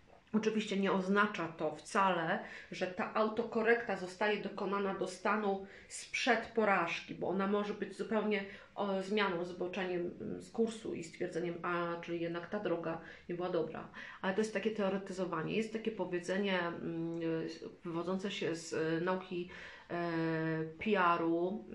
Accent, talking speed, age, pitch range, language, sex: native, 130 wpm, 40-59, 175-215 Hz, Polish, female